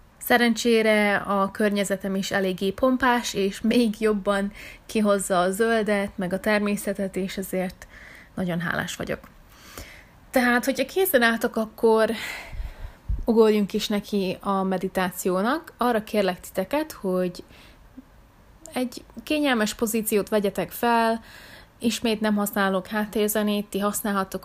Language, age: Hungarian, 30-49